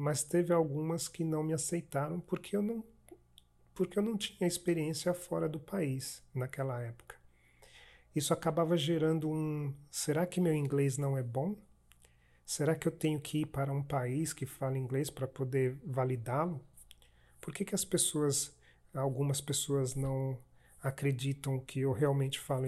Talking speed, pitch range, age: 155 wpm, 130-165 Hz, 40-59